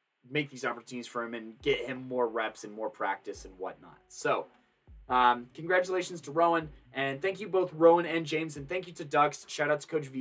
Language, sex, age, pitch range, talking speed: English, male, 20-39, 120-155 Hz, 215 wpm